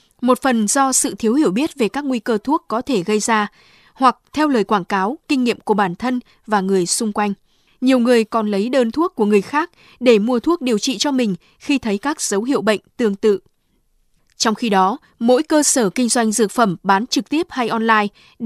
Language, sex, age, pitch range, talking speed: Vietnamese, female, 20-39, 215-270 Hz, 225 wpm